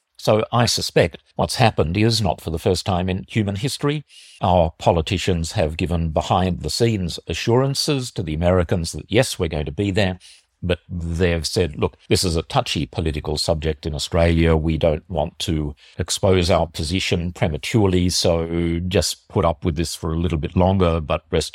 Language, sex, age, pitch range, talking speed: English, male, 50-69, 80-95 Hz, 175 wpm